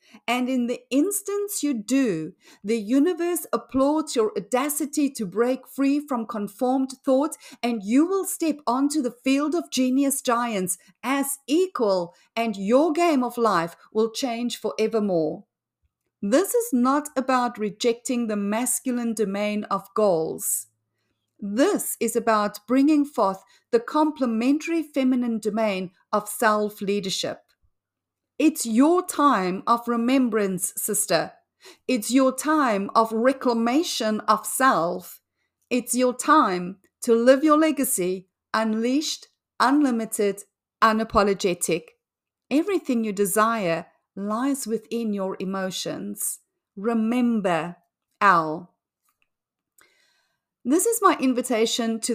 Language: English